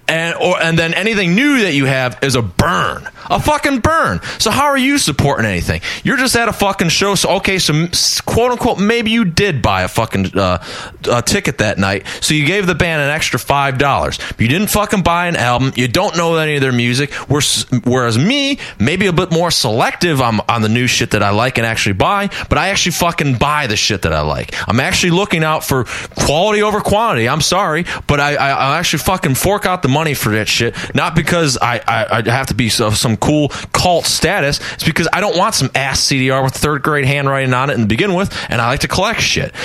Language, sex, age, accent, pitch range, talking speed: English, male, 30-49, American, 125-185 Hz, 230 wpm